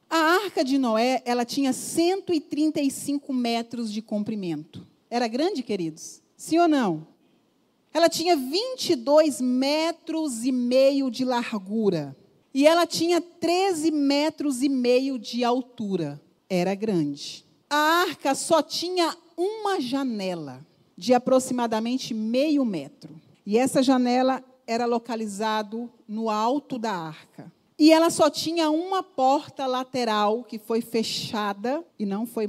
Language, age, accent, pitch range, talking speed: Portuguese, 40-59, Brazilian, 220-305 Hz, 125 wpm